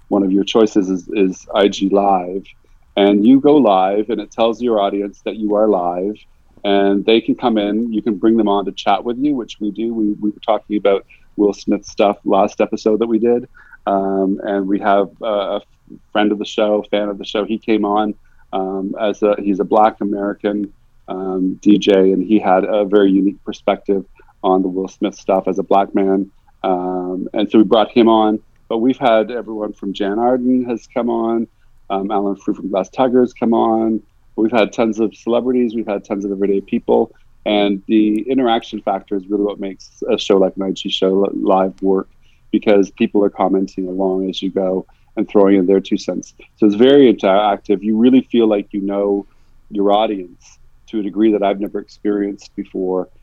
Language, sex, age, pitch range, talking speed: English, male, 40-59, 95-110 Hz, 200 wpm